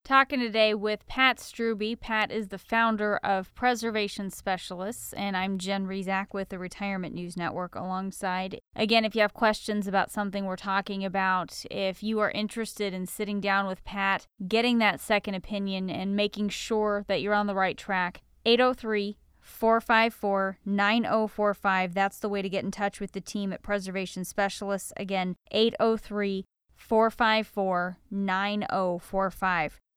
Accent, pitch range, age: American, 190-220 Hz, 10-29